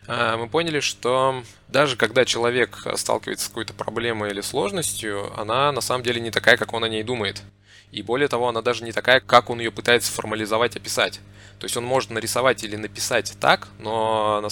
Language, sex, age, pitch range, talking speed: Russian, male, 20-39, 100-120 Hz, 190 wpm